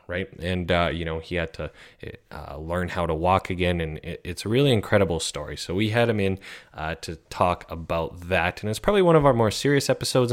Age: 20-39